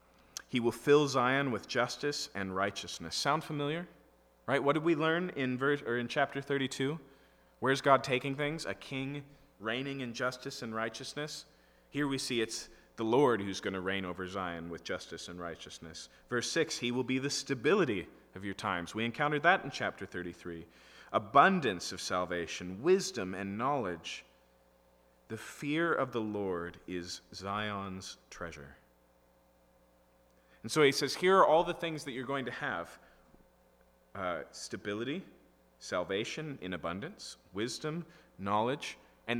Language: English